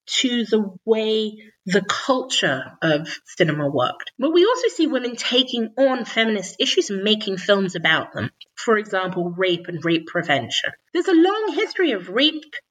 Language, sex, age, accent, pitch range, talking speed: English, female, 30-49, British, 185-275 Hz, 160 wpm